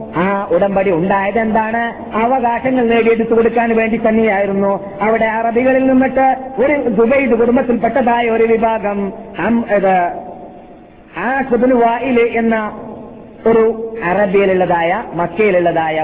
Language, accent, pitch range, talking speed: Malayalam, native, 170-230 Hz, 80 wpm